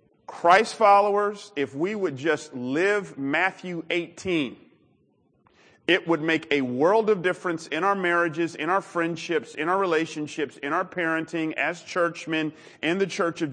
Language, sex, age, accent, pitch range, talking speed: English, male, 40-59, American, 160-210 Hz, 150 wpm